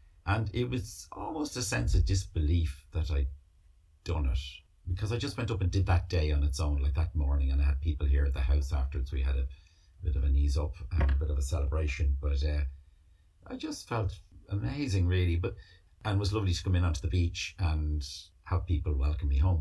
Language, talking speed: English, 230 wpm